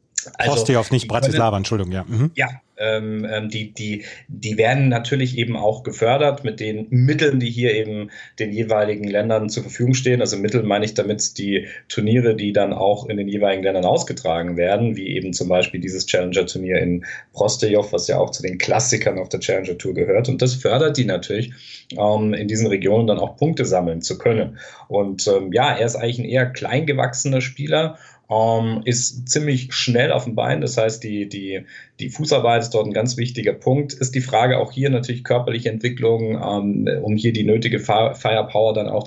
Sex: male